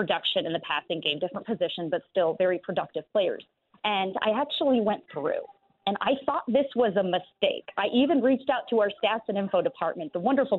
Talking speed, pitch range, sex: 205 wpm, 195-260 Hz, female